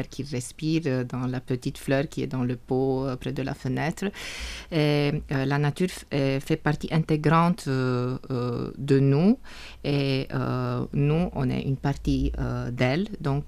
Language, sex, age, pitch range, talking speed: English, female, 30-49, 130-160 Hz, 170 wpm